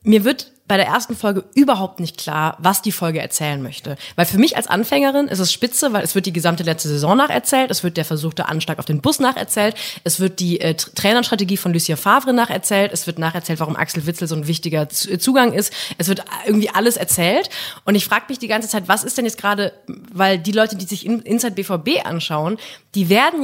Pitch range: 175-230 Hz